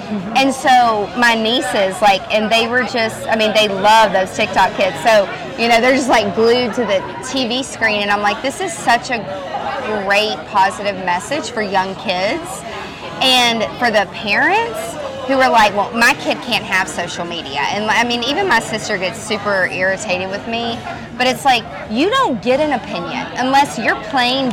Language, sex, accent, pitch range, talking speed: English, female, American, 205-260 Hz, 185 wpm